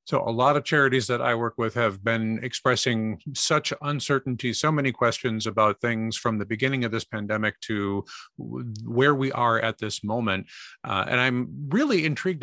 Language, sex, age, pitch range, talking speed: English, male, 50-69, 115-150 Hz, 180 wpm